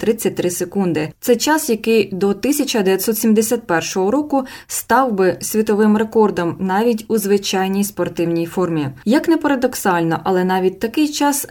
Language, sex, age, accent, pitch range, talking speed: Ukrainian, female, 20-39, native, 180-230 Hz, 125 wpm